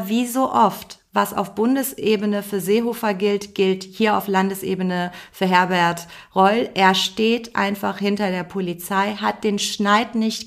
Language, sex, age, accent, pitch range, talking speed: German, female, 40-59, German, 185-225 Hz, 150 wpm